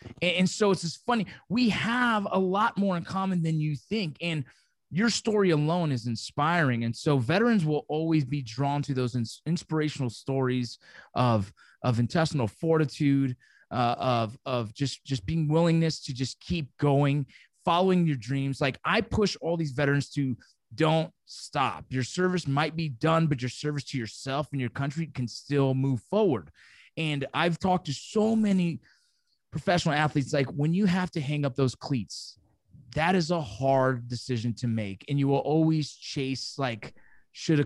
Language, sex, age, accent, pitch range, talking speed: English, male, 20-39, American, 135-180 Hz, 170 wpm